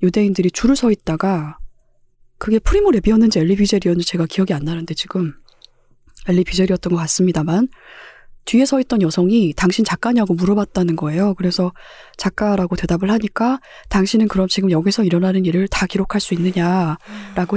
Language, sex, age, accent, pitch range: Korean, female, 20-39, native, 175-220 Hz